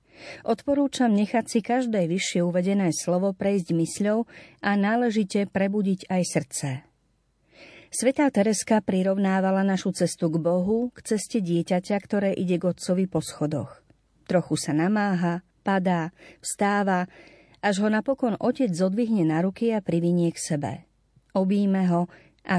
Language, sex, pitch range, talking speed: Slovak, female, 170-220 Hz, 130 wpm